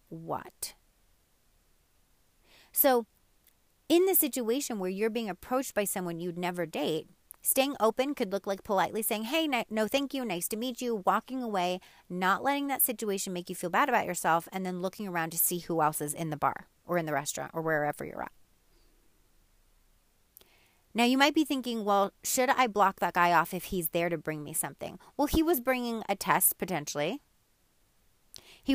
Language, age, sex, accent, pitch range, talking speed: English, 30-49, female, American, 170-230 Hz, 185 wpm